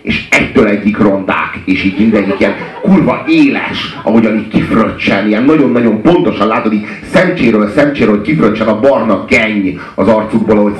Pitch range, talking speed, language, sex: 105-150 Hz, 145 wpm, Hungarian, male